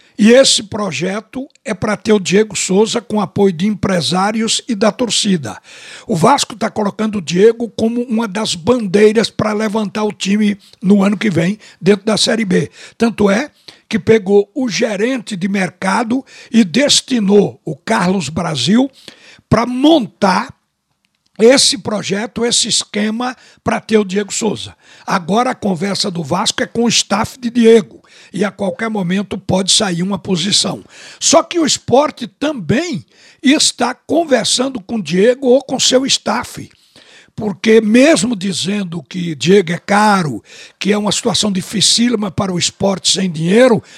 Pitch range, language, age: 200-245 Hz, Portuguese, 60-79